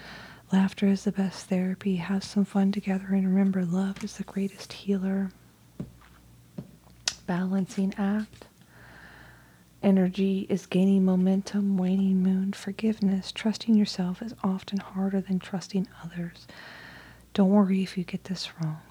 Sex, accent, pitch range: female, American, 170-195 Hz